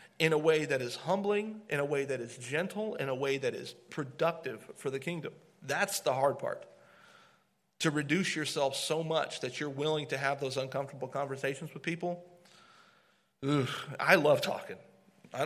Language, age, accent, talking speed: English, 40-59, American, 175 wpm